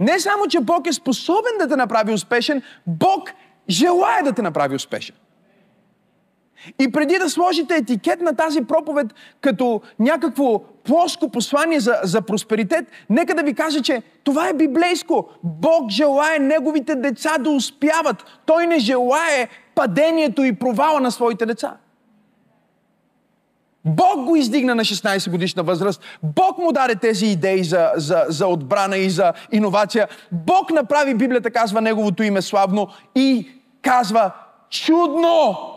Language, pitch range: Bulgarian, 200-310 Hz